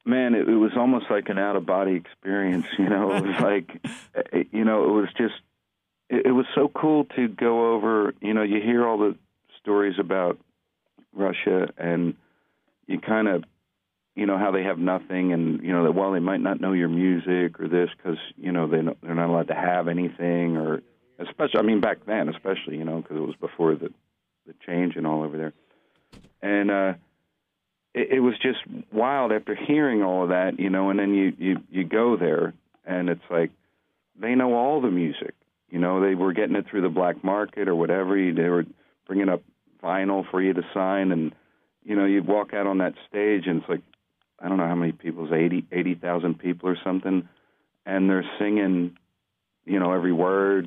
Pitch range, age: 85-100 Hz, 50-69